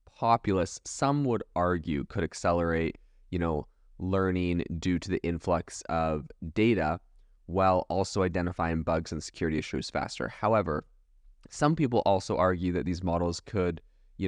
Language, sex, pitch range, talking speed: English, male, 80-95 Hz, 140 wpm